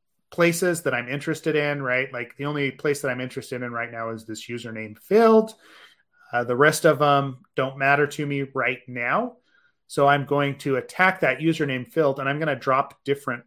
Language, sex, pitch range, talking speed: English, male, 120-150 Hz, 195 wpm